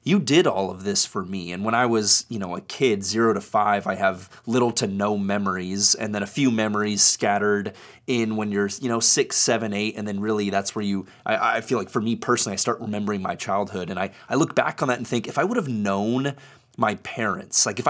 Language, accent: English, American